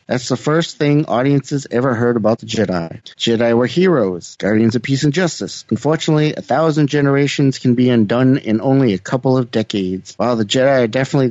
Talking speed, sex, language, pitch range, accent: 190 wpm, male, English, 115-145 Hz, American